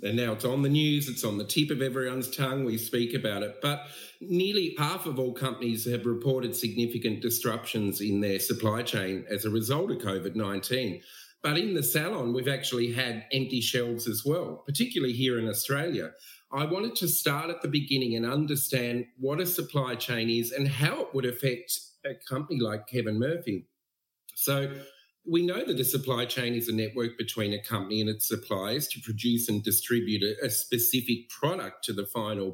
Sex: male